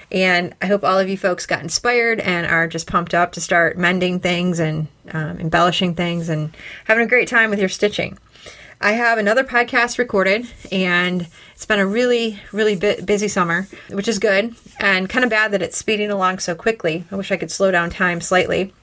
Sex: female